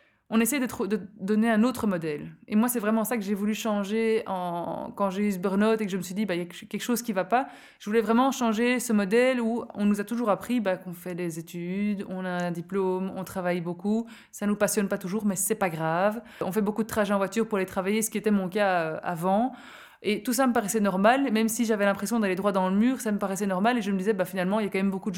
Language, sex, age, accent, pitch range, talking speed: French, female, 20-39, French, 195-225 Hz, 290 wpm